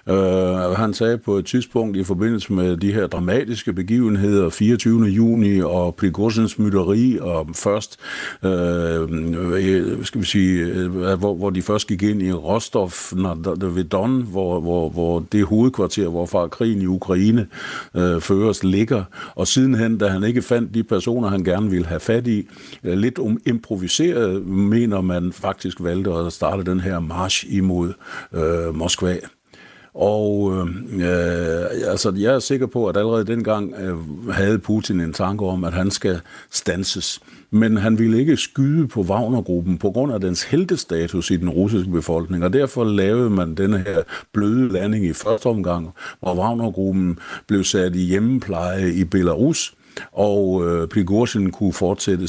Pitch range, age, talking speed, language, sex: 90-110 Hz, 60-79, 160 wpm, Danish, male